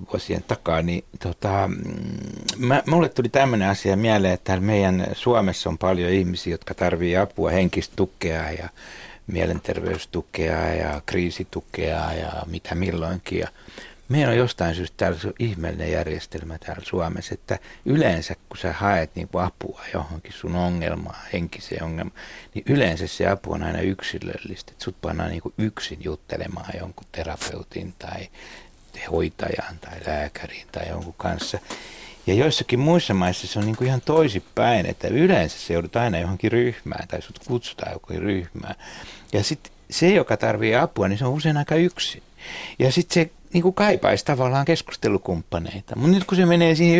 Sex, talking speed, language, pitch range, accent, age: male, 150 wpm, Finnish, 90-125 Hz, native, 60-79